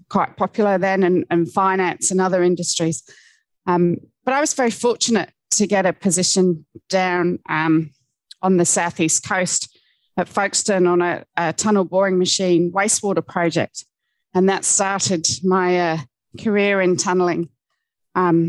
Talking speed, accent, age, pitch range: 145 wpm, British, 30-49, 170-200 Hz